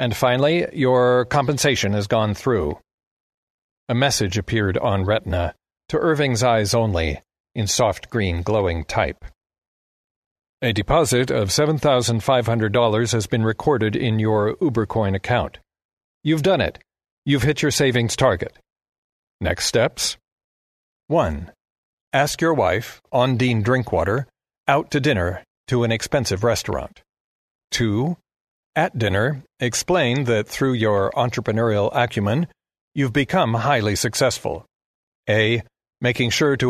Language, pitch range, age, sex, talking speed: English, 105-130 Hz, 50-69, male, 120 wpm